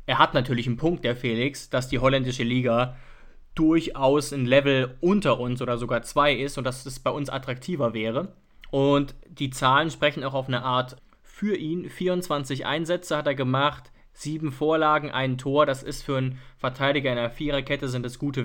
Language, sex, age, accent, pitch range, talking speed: German, male, 20-39, German, 125-140 Hz, 190 wpm